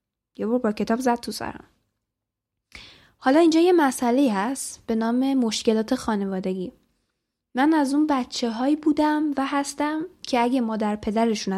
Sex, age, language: female, 10-29, Persian